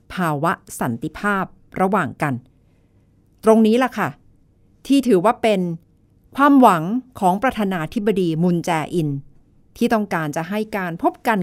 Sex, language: female, Thai